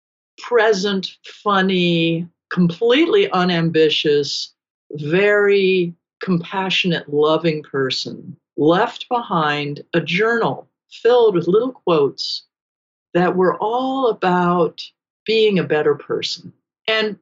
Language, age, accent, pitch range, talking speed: English, 50-69, American, 160-240 Hz, 85 wpm